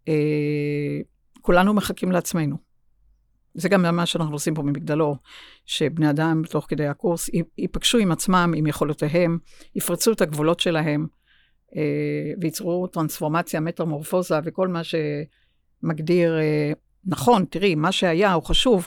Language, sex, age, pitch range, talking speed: Hebrew, female, 60-79, 145-185 Hz, 125 wpm